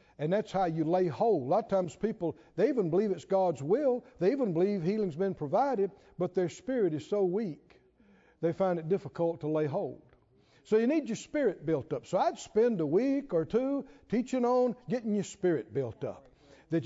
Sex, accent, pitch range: male, American, 185-245 Hz